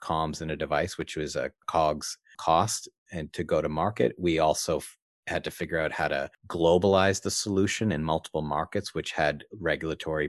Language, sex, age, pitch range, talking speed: English, male, 30-49, 75-95 Hz, 180 wpm